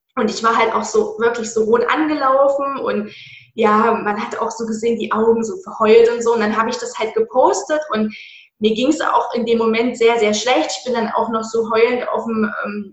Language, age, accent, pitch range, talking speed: German, 20-39, German, 220-270 Hz, 235 wpm